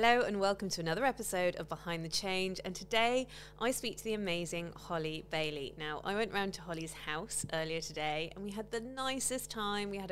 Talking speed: 215 wpm